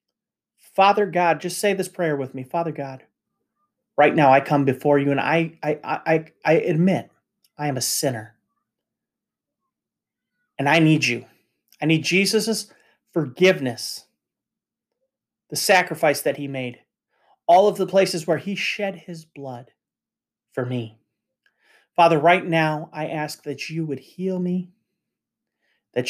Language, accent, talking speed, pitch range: English, American, 140 wpm, 130-170 Hz